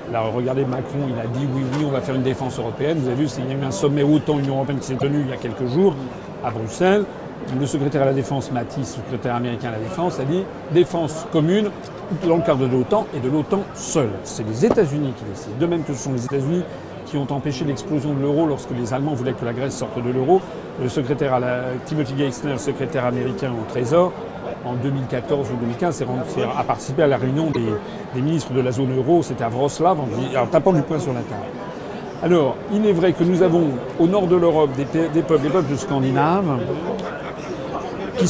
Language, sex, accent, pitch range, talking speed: French, male, French, 130-170 Hz, 225 wpm